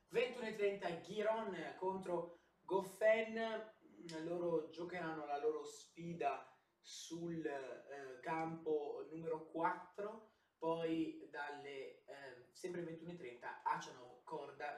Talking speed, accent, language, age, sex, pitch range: 85 wpm, native, Italian, 20-39, male, 130-190 Hz